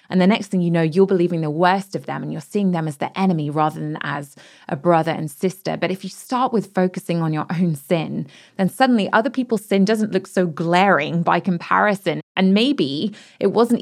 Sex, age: female, 20-39